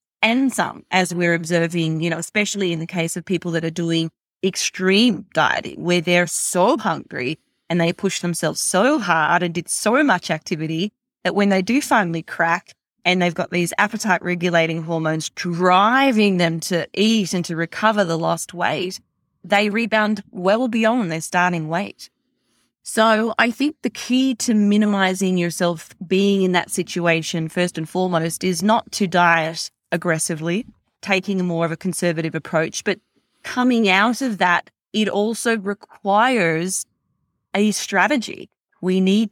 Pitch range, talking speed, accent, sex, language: 170-205 Hz, 155 wpm, Australian, female, English